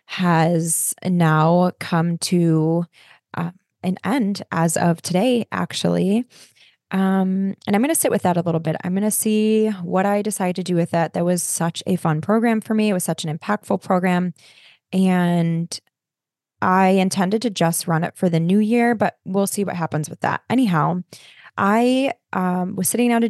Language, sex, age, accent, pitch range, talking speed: English, female, 20-39, American, 170-205 Hz, 185 wpm